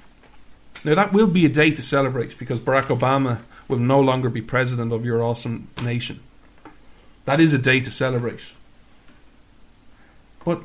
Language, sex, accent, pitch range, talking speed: English, male, Irish, 130-160 Hz, 150 wpm